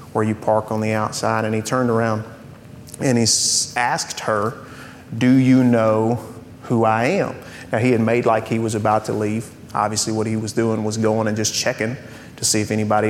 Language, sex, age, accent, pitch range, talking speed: English, male, 30-49, American, 110-130 Hz, 200 wpm